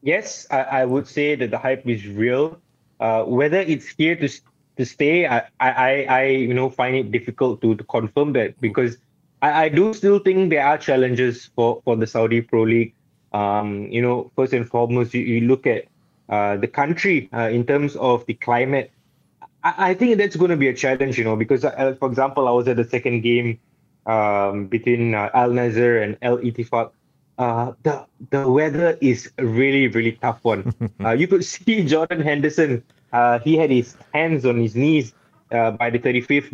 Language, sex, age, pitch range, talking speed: English, male, 20-39, 120-150 Hz, 195 wpm